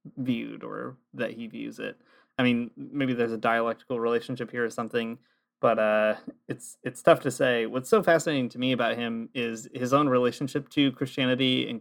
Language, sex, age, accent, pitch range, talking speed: English, male, 20-39, American, 115-135 Hz, 190 wpm